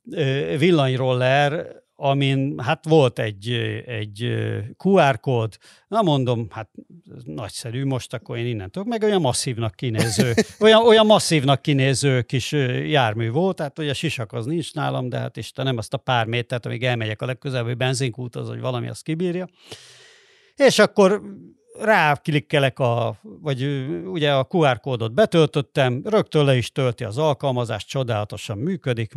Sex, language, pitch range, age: male, Hungarian, 120-160 Hz, 50-69